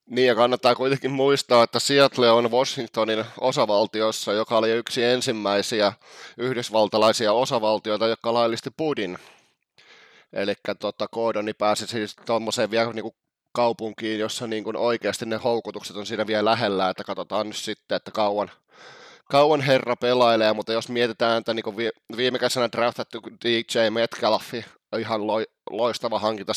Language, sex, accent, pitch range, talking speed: Finnish, male, native, 105-120 Hz, 135 wpm